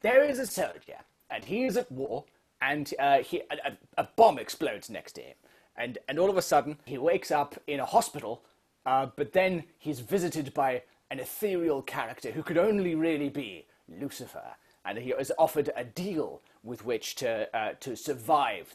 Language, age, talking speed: English, 30-49, 185 wpm